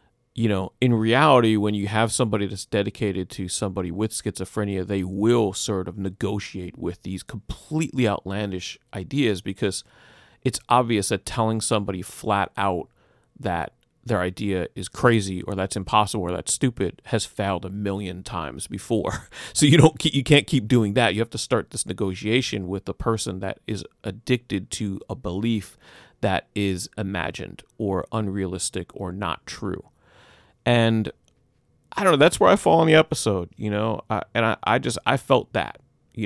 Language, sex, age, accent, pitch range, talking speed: English, male, 40-59, American, 95-120 Hz, 170 wpm